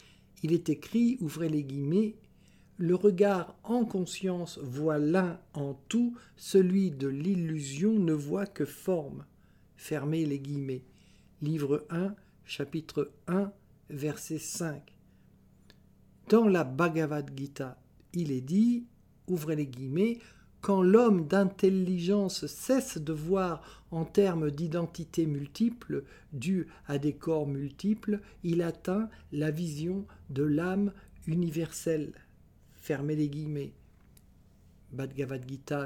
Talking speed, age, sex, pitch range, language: 115 wpm, 60-79, male, 140-185 Hz, French